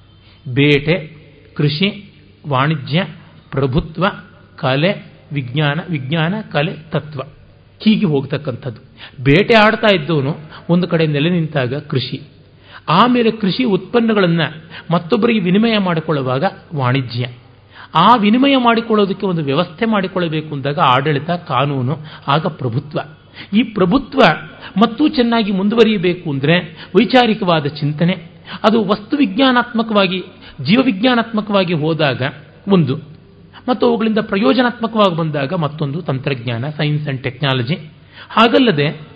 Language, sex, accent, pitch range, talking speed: Kannada, male, native, 140-210 Hz, 95 wpm